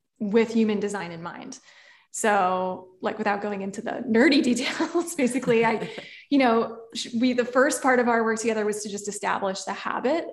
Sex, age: female, 10-29